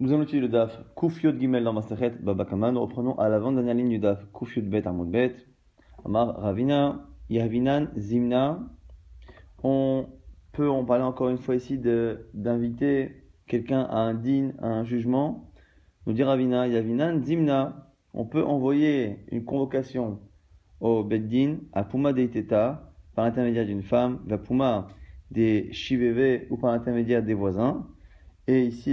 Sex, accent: male, French